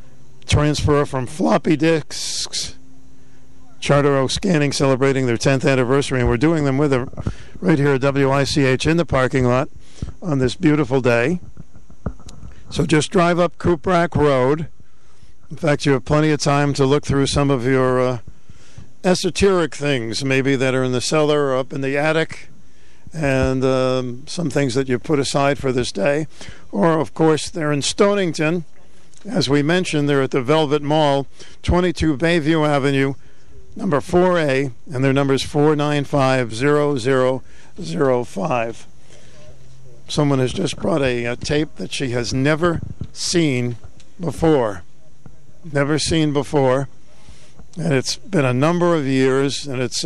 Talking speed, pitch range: 145 wpm, 130-155 Hz